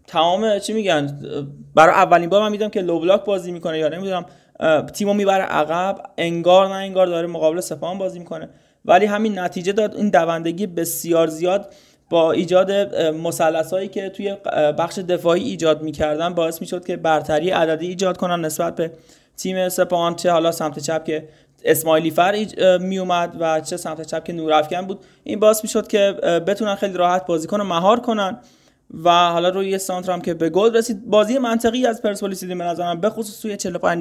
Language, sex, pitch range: Persian, male, 165-200 Hz